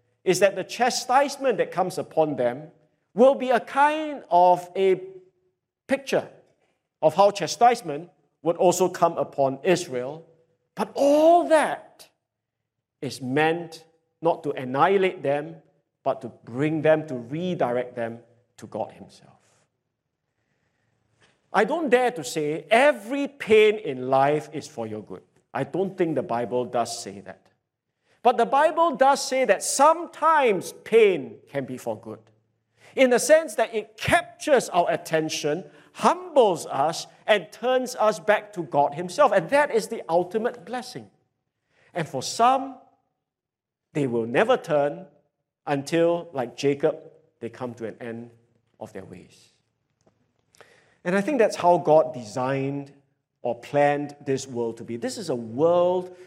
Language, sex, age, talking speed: English, male, 50-69, 140 wpm